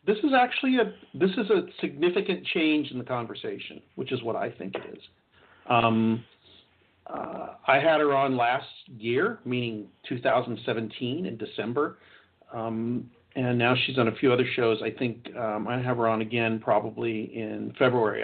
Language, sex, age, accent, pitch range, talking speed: English, male, 50-69, American, 110-130 Hz, 170 wpm